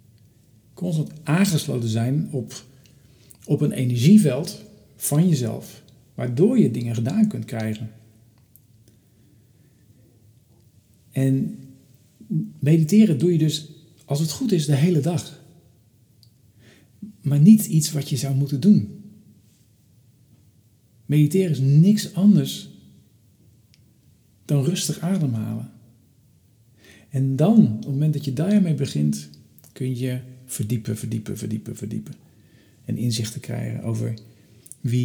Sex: male